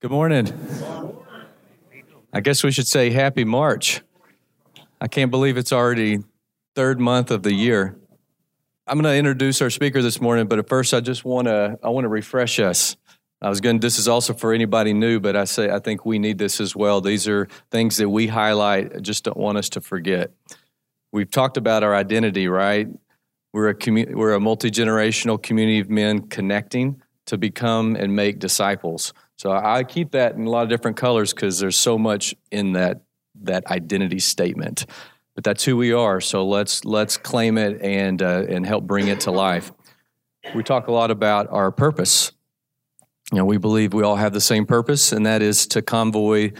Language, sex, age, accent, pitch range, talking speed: English, male, 40-59, American, 100-115 Hz, 195 wpm